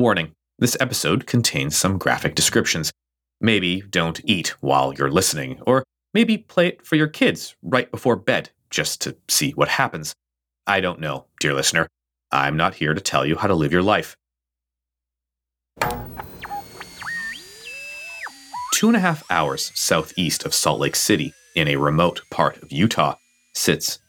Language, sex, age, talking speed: English, male, 30-49, 150 wpm